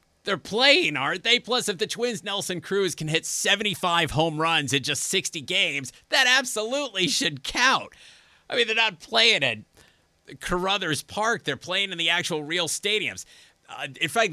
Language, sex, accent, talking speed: English, male, American, 170 wpm